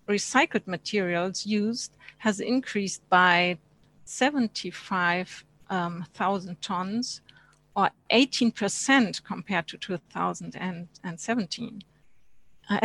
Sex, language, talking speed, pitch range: female, English, 60 wpm, 185-230 Hz